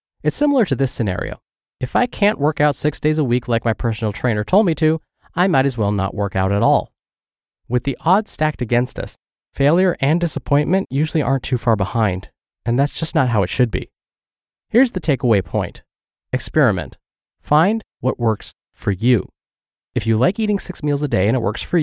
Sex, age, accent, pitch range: male, 20-39, American, 110-150 Hz